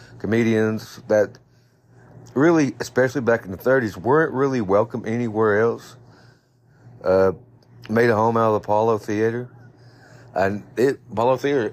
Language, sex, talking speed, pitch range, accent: English, male, 135 wpm, 110-125 Hz, American